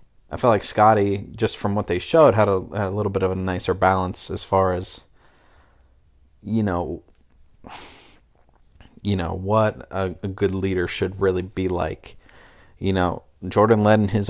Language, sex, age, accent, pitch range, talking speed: English, male, 30-49, American, 95-105 Hz, 170 wpm